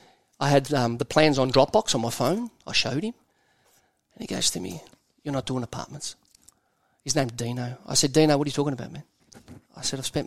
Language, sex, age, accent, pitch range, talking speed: English, male, 30-49, Australian, 130-195 Hz, 220 wpm